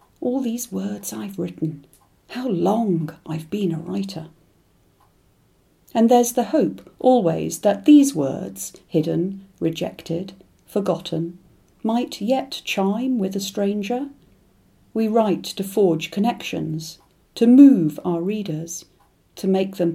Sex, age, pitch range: female, 50-69, 165-220 Hz